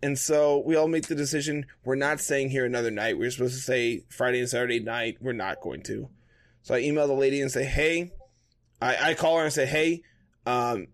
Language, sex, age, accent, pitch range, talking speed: English, male, 20-39, American, 125-155 Hz, 225 wpm